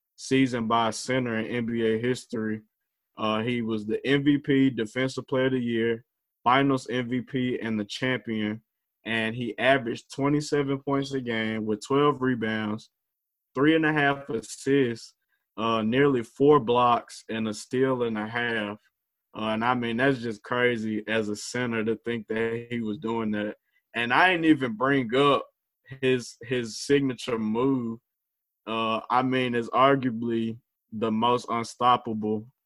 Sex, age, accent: male, 20-39, American